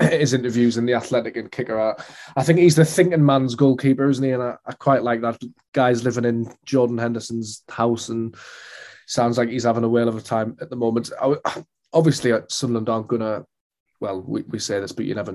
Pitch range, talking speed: 110-130 Hz, 220 wpm